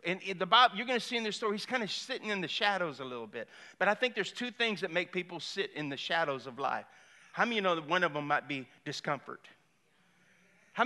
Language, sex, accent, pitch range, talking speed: English, male, American, 170-235 Hz, 265 wpm